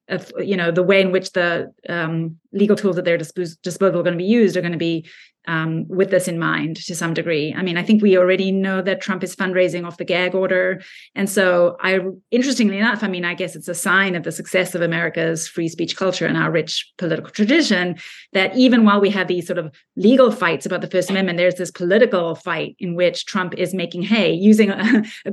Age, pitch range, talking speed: 30-49, 175-215 Hz, 235 wpm